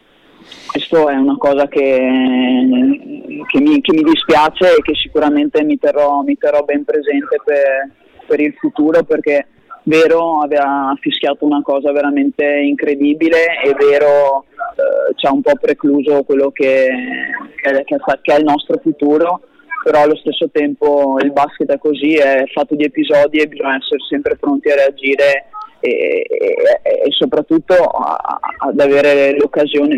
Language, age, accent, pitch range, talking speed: Italian, 20-39, native, 140-235 Hz, 145 wpm